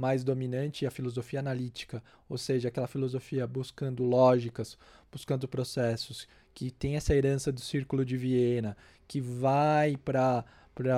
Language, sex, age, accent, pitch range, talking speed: Portuguese, male, 20-39, Brazilian, 125-160 Hz, 135 wpm